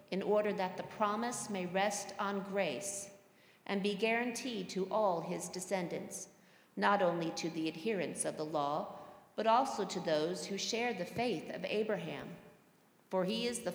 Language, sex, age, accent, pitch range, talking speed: English, female, 50-69, American, 185-225 Hz, 165 wpm